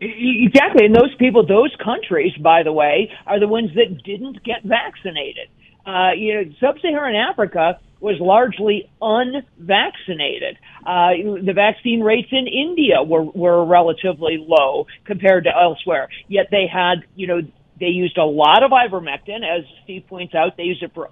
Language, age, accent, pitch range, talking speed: English, 50-69, American, 170-225 Hz, 160 wpm